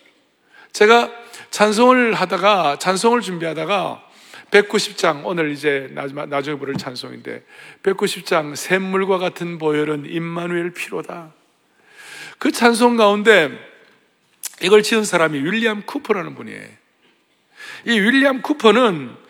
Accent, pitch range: native, 160-235 Hz